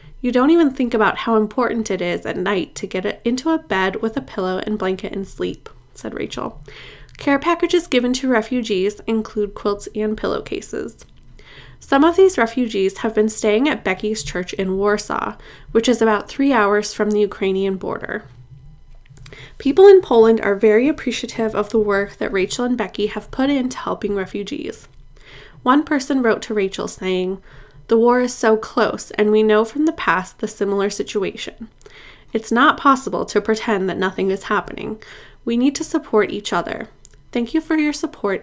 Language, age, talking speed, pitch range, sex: English, 20-39, 175 wpm, 195-245 Hz, female